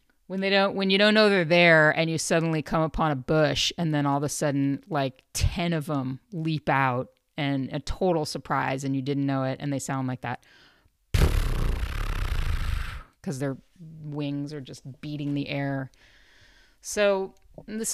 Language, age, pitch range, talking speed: English, 30-49, 135-165 Hz, 175 wpm